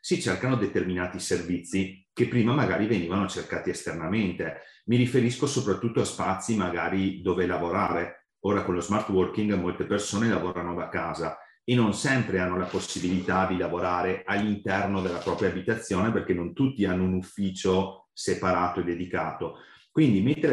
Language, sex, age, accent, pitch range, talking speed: Italian, male, 40-59, native, 90-110 Hz, 150 wpm